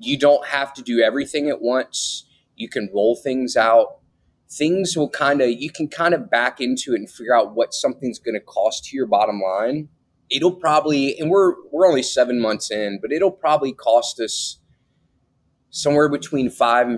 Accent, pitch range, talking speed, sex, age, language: American, 110-145 Hz, 180 wpm, male, 20-39, English